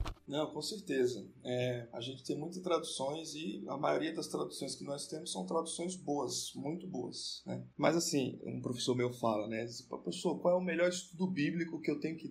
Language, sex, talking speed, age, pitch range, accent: Portuguese, male, 205 wpm, 20-39, 130-165 Hz, Brazilian